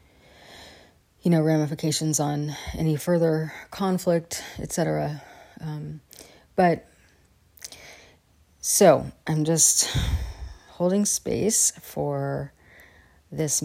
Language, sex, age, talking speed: English, female, 30-49, 80 wpm